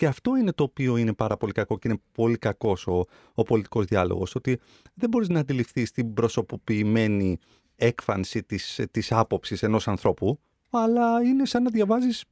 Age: 40-59